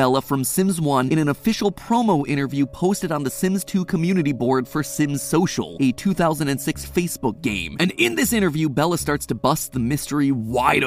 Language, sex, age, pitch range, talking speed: English, male, 30-49, 140-185 Hz, 190 wpm